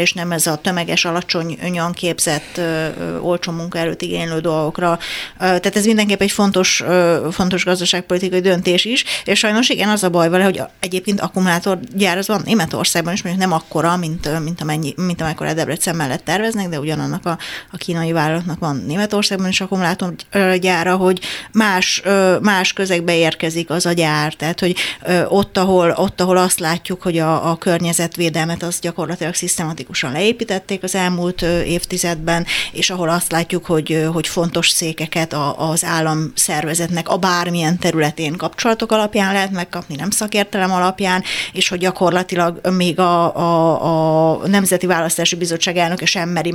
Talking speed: 150 wpm